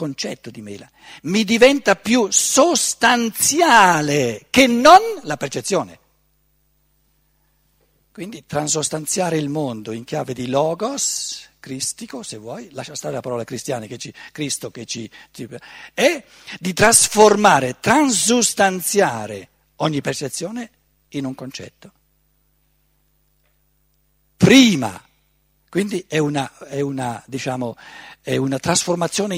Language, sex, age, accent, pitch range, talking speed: Italian, male, 60-79, native, 140-215 Hz, 105 wpm